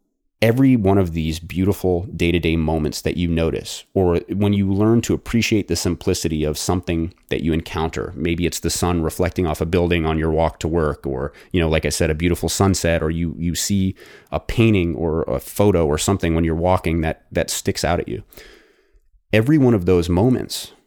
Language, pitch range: English, 80-100 Hz